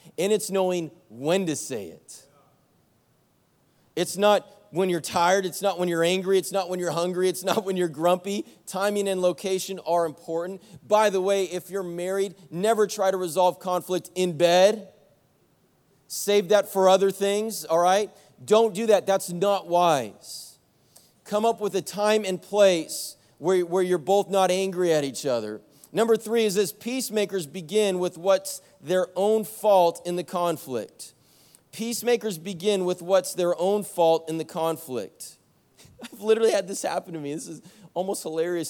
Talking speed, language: 170 wpm, English